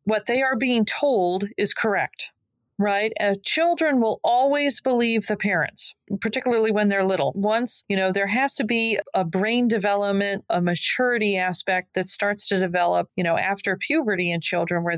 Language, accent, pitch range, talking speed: English, American, 185-245 Hz, 170 wpm